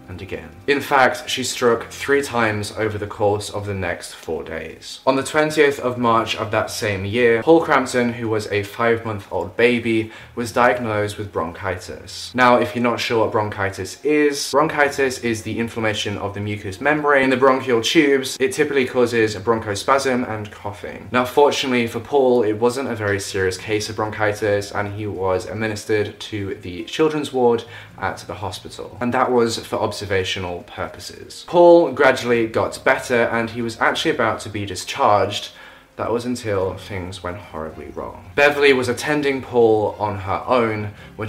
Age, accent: 10-29, British